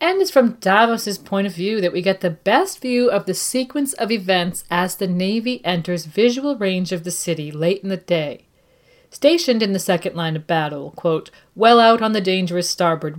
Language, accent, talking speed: English, American, 205 wpm